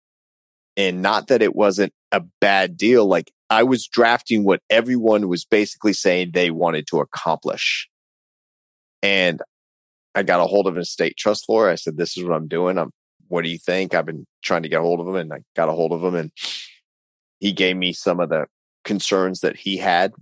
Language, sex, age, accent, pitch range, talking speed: English, male, 30-49, American, 75-110 Hz, 210 wpm